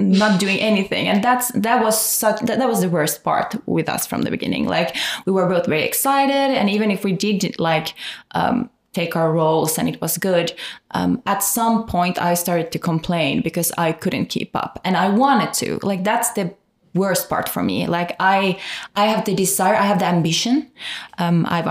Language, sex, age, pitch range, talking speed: English, female, 20-39, 175-215 Hz, 205 wpm